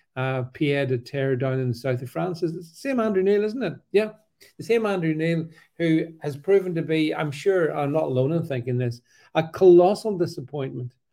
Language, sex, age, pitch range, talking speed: English, male, 50-69, 130-170 Hz, 205 wpm